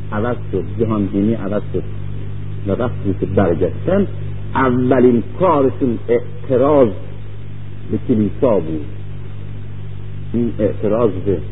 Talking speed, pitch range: 75 wpm, 100-125 Hz